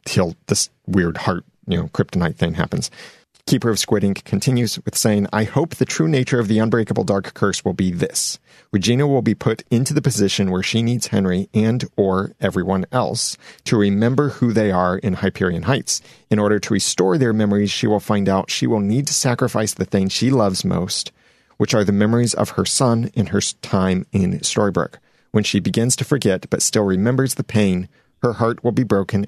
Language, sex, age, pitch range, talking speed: English, male, 40-59, 100-125 Hz, 205 wpm